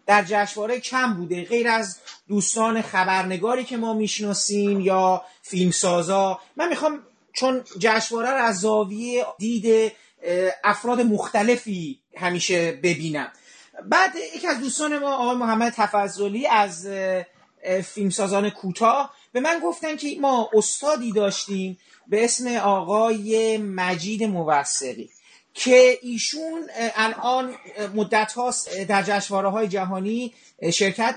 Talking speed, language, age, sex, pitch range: 110 wpm, Persian, 30-49, male, 200-250 Hz